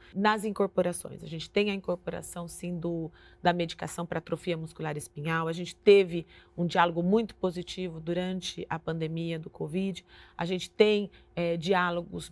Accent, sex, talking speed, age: Brazilian, female, 145 wpm, 30-49